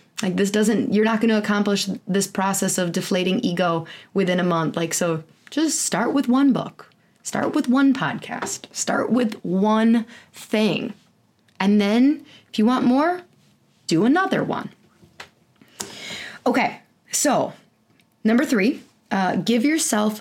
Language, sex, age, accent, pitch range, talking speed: English, female, 20-39, American, 180-230 Hz, 140 wpm